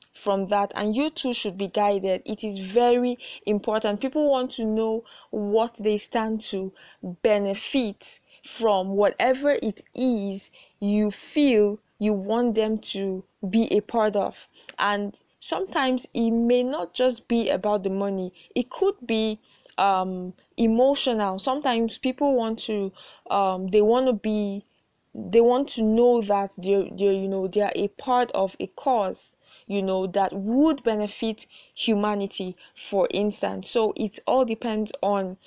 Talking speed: 150 wpm